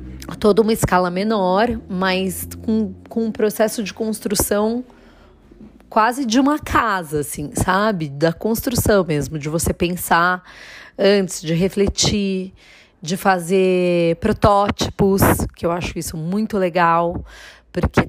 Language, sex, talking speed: Portuguese, female, 120 wpm